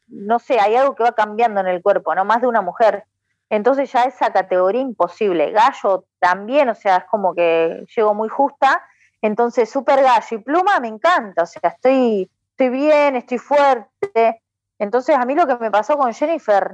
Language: Spanish